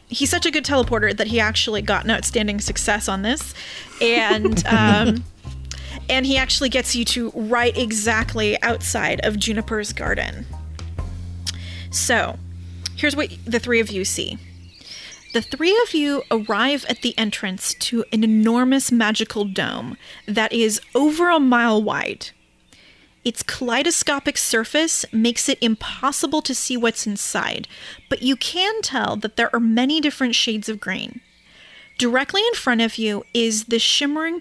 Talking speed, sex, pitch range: 150 wpm, female, 215-260 Hz